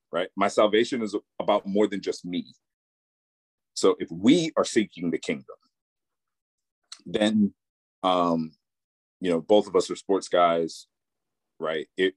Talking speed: 140 wpm